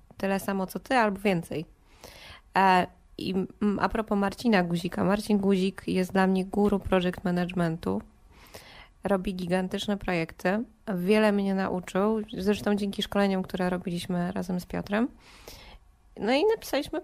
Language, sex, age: Polish, female, 20-39